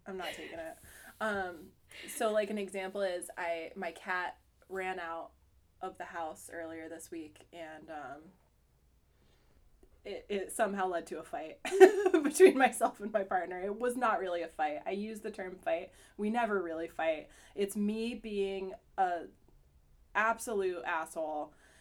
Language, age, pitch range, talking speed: English, 20-39, 170-240 Hz, 155 wpm